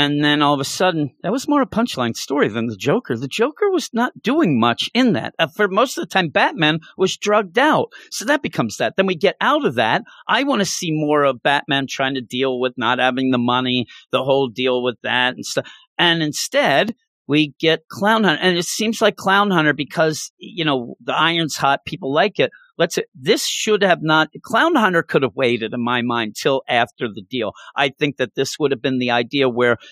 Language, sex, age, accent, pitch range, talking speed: English, male, 50-69, American, 125-180 Hz, 225 wpm